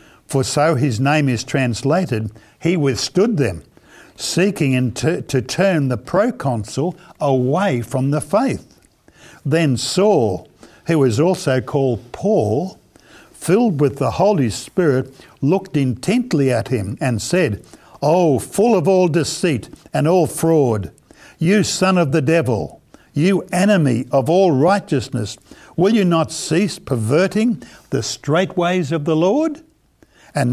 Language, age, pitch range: English, 60-79, 130-170 Hz